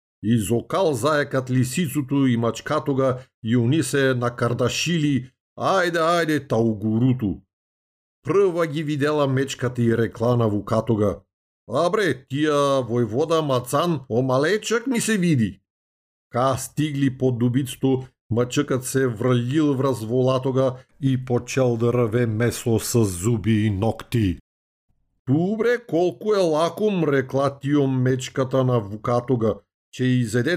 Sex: male